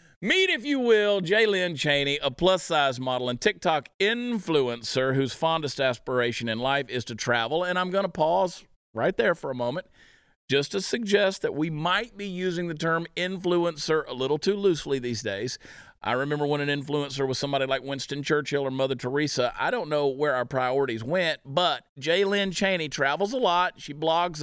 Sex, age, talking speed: male, 40-59, 190 wpm